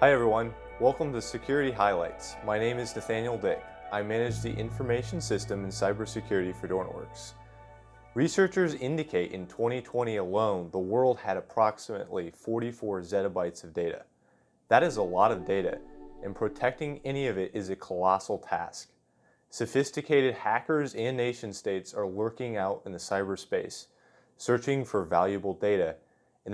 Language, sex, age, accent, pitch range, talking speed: English, male, 30-49, American, 100-130 Hz, 145 wpm